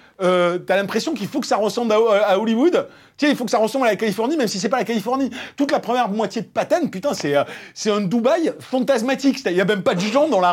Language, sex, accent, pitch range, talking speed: French, male, French, 165-245 Hz, 260 wpm